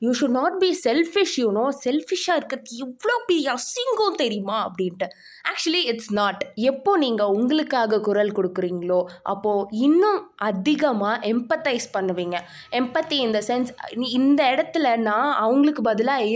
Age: 20-39